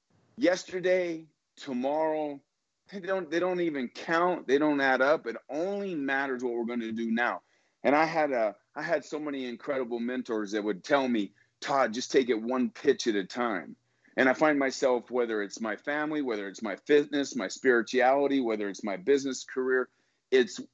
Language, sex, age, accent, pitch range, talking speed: English, male, 40-59, American, 120-180 Hz, 185 wpm